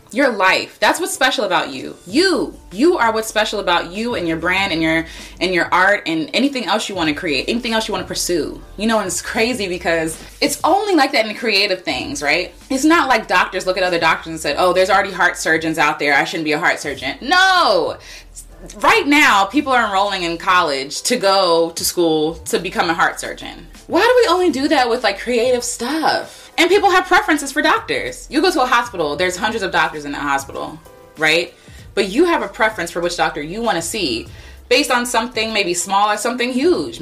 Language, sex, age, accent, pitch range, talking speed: English, female, 20-39, American, 175-250 Hz, 225 wpm